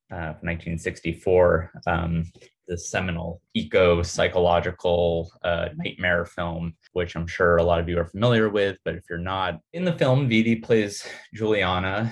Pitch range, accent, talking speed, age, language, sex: 85-100 Hz, American, 140 wpm, 20-39, English, male